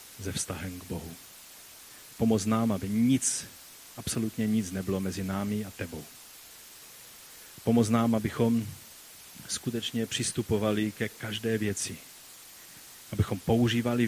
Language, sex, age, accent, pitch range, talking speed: Czech, male, 30-49, native, 105-120 Hz, 105 wpm